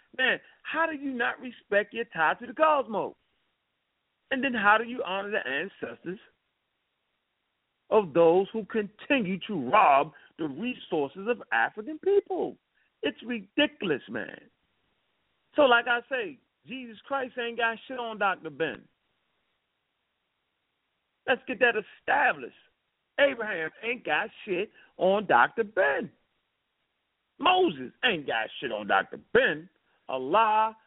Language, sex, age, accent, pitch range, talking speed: English, male, 50-69, American, 180-250 Hz, 125 wpm